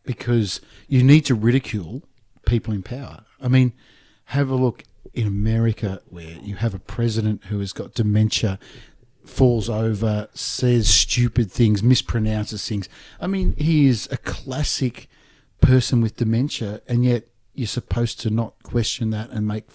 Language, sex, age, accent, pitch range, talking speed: English, male, 50-69, Australian, 105-135 Hz, 150 wpm